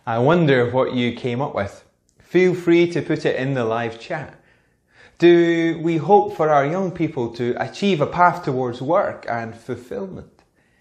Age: 20-39